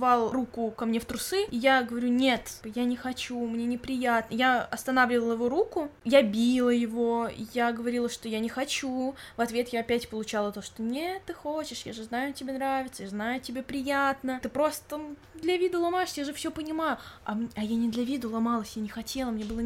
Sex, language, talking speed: female, Russian, 205 wpm